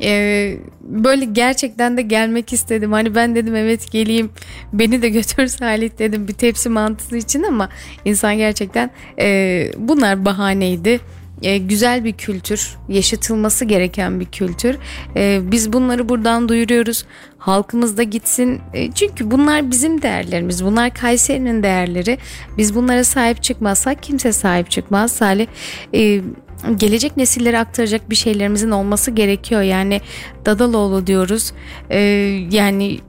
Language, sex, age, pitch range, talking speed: Turkish, female, 10-29, 200-235 Hz, 120 wpm